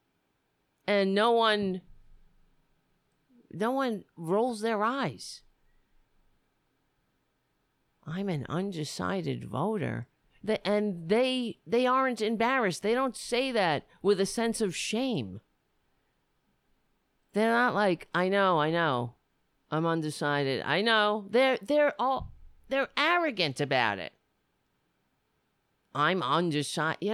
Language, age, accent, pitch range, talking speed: English, 50-69, American, 150-240 Hz, 105 wpm